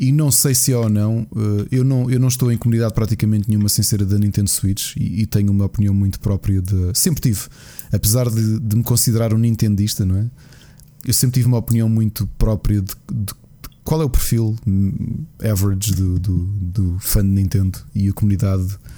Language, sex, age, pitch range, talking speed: Portuguese, male, 20-39, 105-135 Hz, 195 wpm